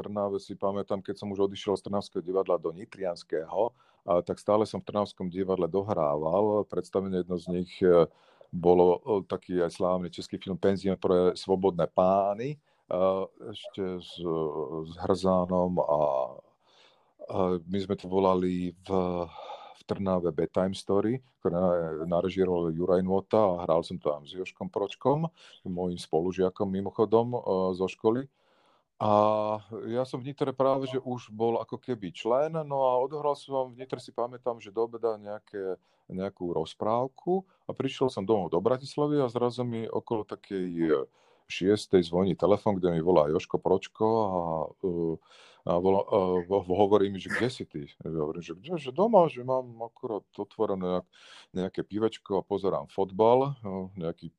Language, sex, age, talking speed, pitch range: Slovak, male, 40-59, 150 wpm, 90-115 Hz